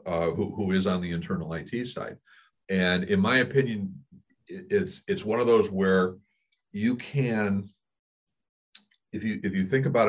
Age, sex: 50-69, male